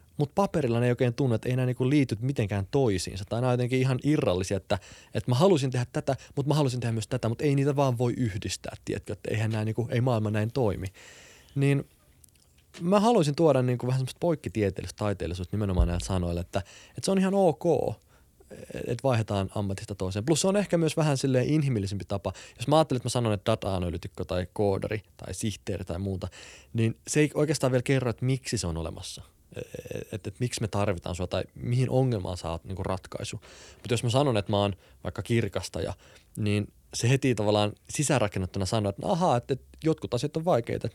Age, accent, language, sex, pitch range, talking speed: 20-39, native, Finnish, male, 95-125 Hz, 200 wpm